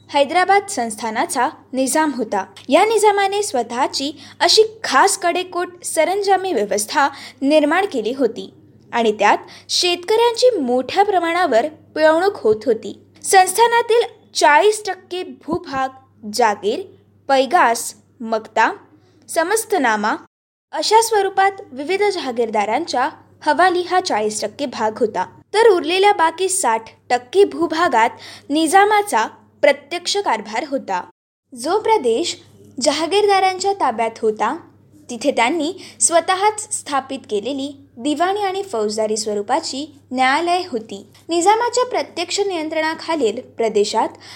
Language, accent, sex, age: Marathi, native, female, 20-39